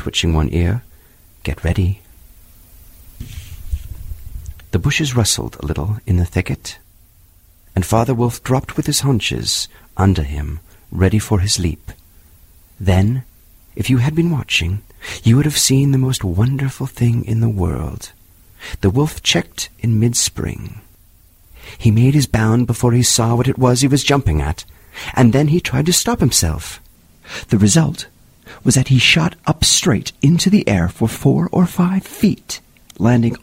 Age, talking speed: 40-59, 155 wpm